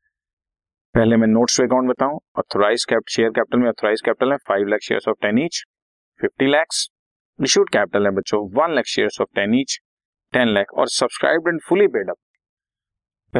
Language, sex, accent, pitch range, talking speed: Hindi, male, native, 105-175 Hz, 60 wpm